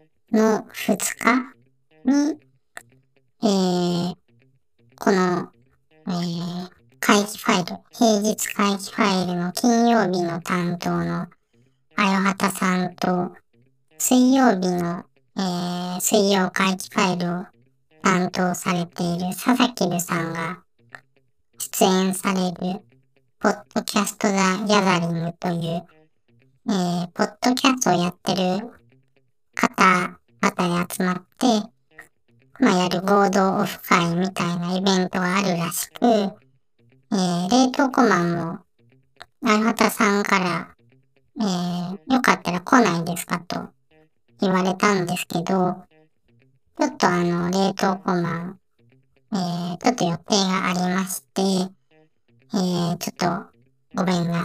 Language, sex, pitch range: Japanese, male, 165-200 Hz